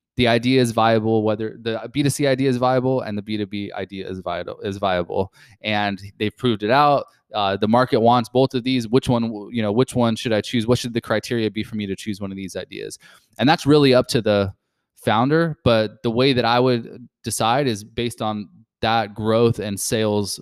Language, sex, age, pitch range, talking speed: English, male, 20-39, 110-125 Hz, 225 wpm